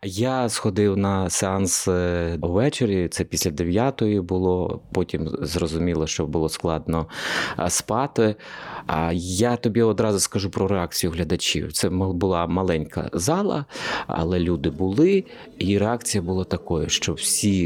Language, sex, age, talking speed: Ukrainian, male, 30-49, 120 wpm